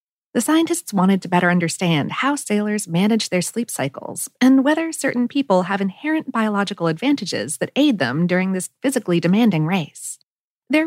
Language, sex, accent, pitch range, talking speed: English, female, American, 175-260 Hz, 160 wpm